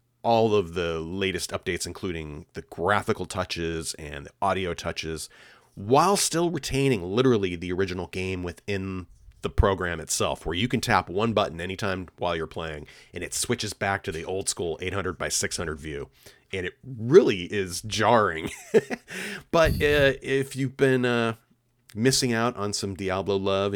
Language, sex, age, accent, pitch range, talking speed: English, male, 30-49, American, 85-120 Hz, 160 wpm